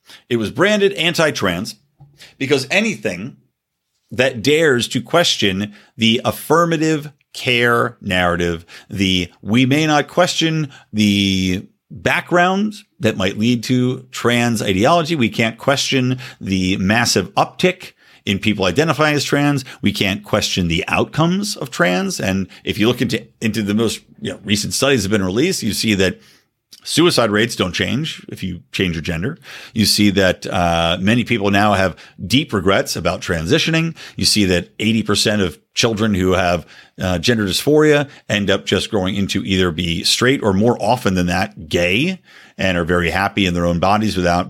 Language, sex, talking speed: English, male, 160 wpm